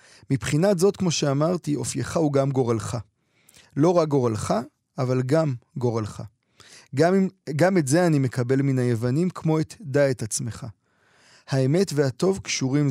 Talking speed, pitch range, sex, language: 145 wpm, 125-160 Hz, male, Hebrew